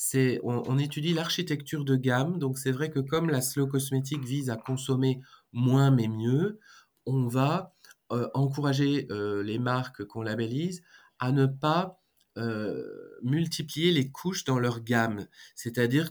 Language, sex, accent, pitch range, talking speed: French, male, French, 120-145 Hz, 155 wpm